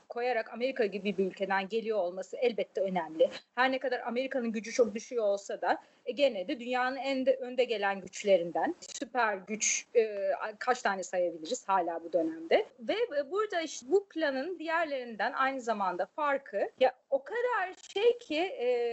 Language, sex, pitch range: Turkish, female, 240-325 Hz